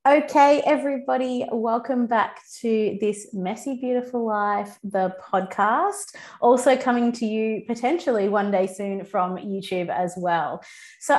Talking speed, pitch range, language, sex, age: 130 wpm, 180-235 Hz, English, female, 20-39